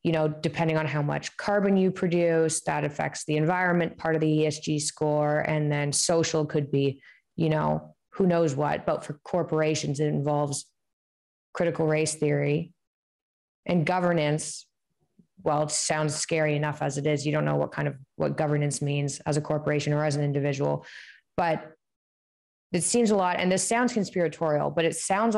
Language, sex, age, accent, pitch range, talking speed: English, female, 20-39, American, 150-170 Hz, 175 wpm